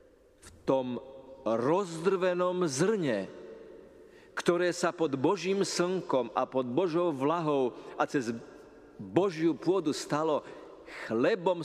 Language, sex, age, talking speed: Slovak, male, 50-69, 100 wpm